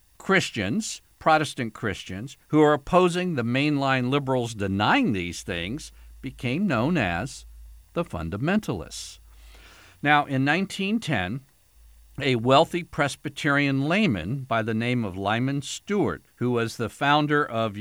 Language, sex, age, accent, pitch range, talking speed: English, male, 50-69, American, 115-160 Hz, 120 wpm